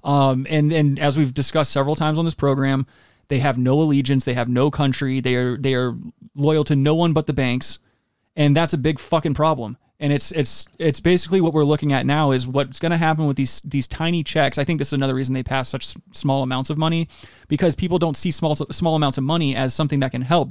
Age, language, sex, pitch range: 20-39, English, male, 130-155 Hz